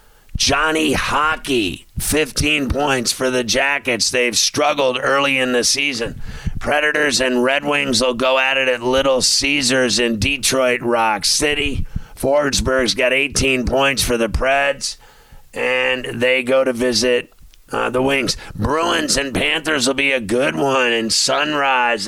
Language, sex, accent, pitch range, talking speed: English, male, American, 120-135 Hz, 145 wpm